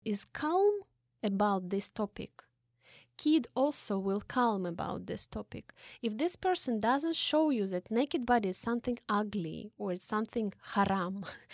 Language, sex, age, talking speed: Russian, female, 20-39, 145 wpm